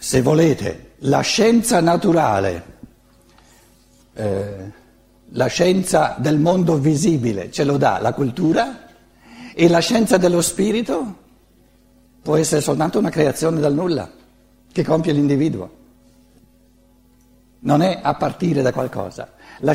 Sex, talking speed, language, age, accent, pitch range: male, 115 wpm, Italian, 60-79, native, 145-185 Hz